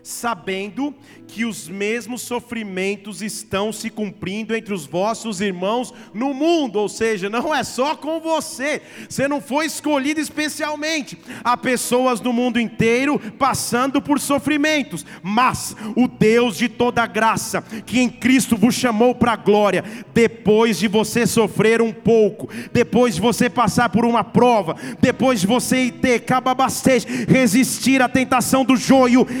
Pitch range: 230-275 Hz